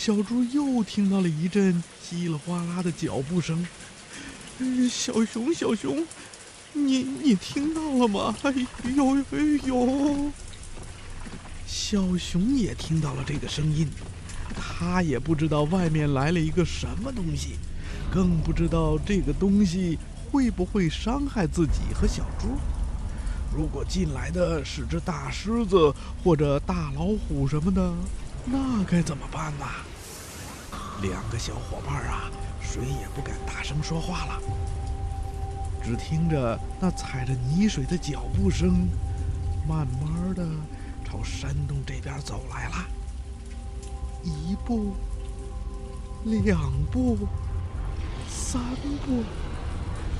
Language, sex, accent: Chinese, male, native